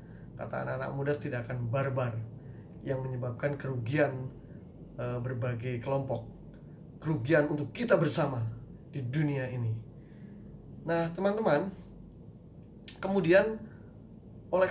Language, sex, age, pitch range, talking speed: Indonesian, male, 20-39, 135-175 Hz, 95 wpm